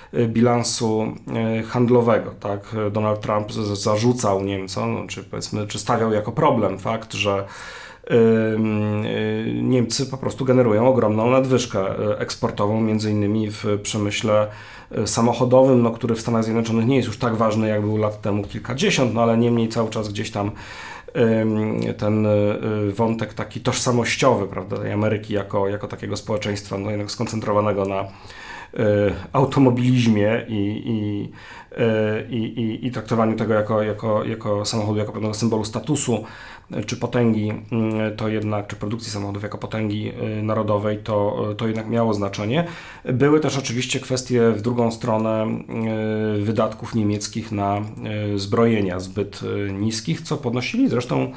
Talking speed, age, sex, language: 135 wpm, 40-59, male, Polish